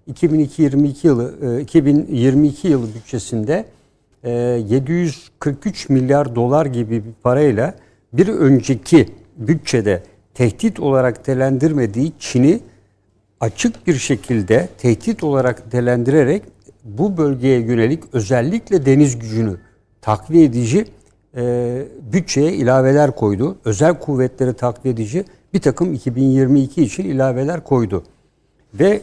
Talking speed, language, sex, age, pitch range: 95 wpm, Turkish, male, 60-79, 120-155 Hz